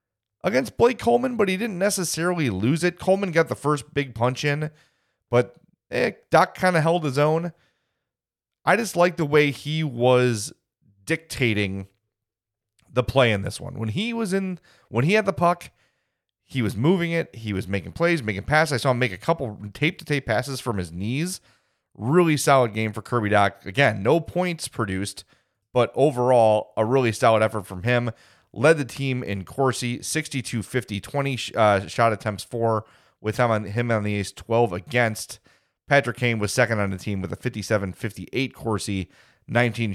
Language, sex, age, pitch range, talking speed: English, male, 30-49, 105-140 Hz, 180 wpm